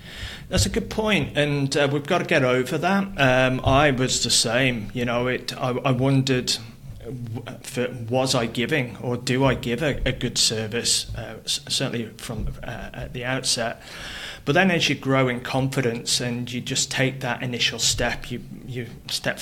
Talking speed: 180 wpm